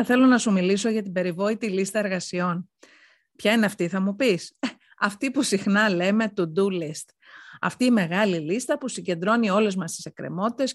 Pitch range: 185-245 Hz